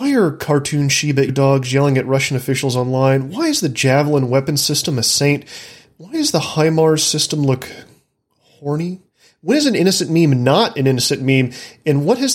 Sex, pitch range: male, 130-170 Hz